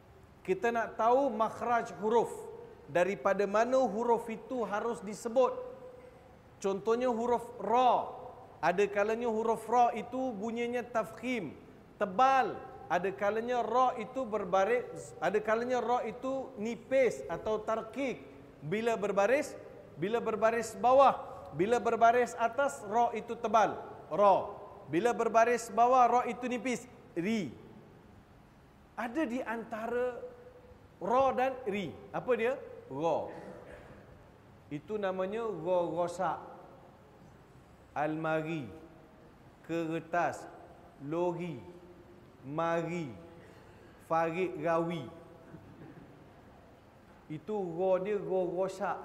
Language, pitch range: Malay, 175-240 Hz